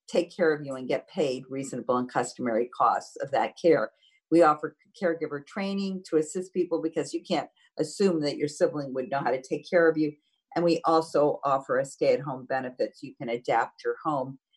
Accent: American